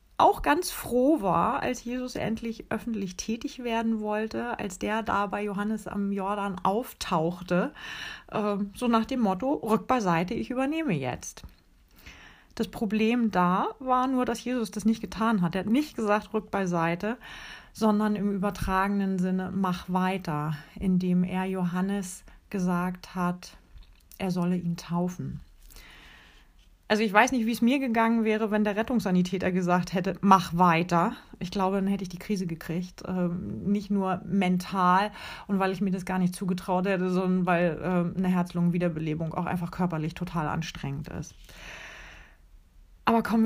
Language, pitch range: German, 180-225 Hz